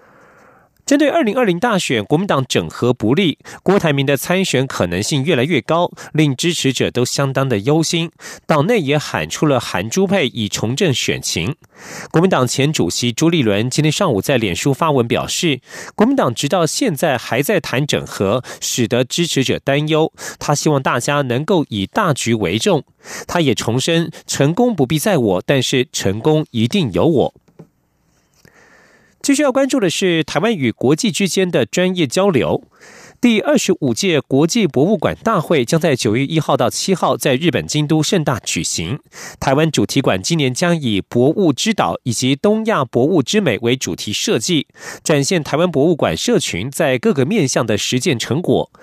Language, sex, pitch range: German, male, 125-180 Hz